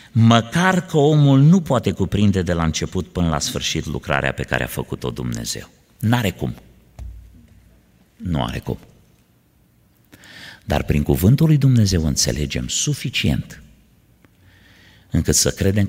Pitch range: 75-105 Hz